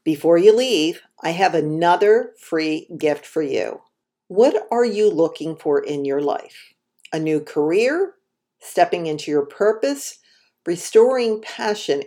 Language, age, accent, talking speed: English, 50-69, American, 135 wpm